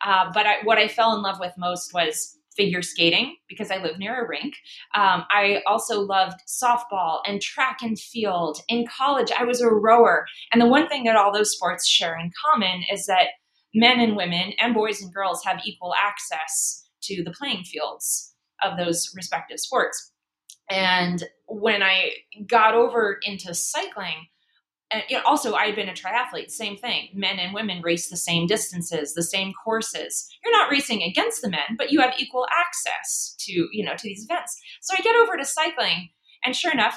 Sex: female